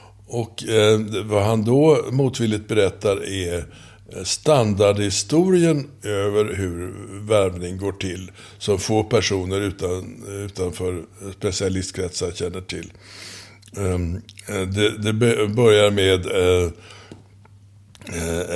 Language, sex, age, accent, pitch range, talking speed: Swedish, male, 60-79, native, 95-115 Hz, 90 wpm